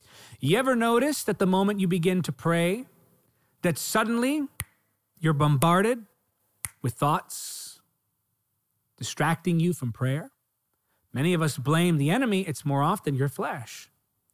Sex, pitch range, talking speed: male, 130-205 Hz, 130 wpm